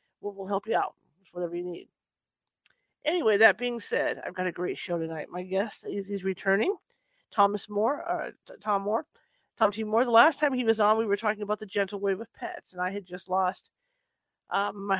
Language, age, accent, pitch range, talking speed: English, 40-59, American, 195-240 Hz, 205 wpm